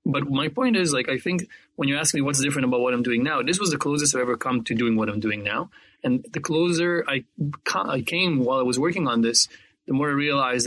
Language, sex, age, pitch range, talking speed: English, male, 20-39, 115-145 Hz, 260 wpm